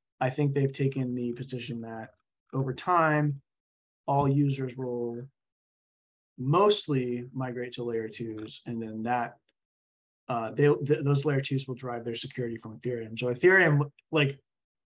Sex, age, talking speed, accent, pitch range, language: male, 20-39, 140 wpm, American, 120-145 Hz, English